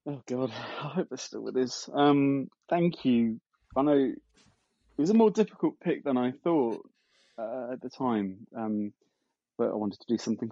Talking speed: 190 wpm